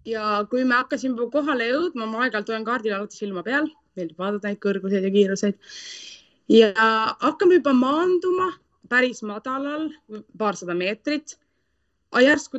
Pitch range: 180-245 Hz